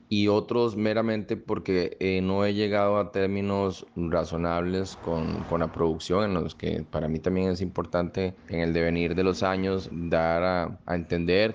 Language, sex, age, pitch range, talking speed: Spanish, male, 30-49, 85-100 Hz, 170 wpm